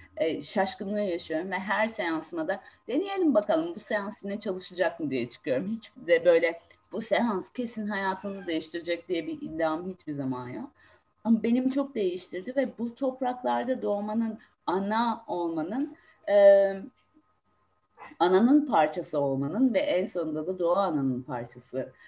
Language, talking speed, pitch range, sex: Turkish, 135 wpm, 155-215 Hz, female